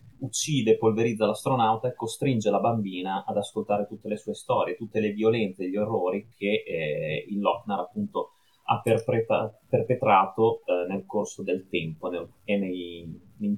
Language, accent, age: Italian, native, 30-49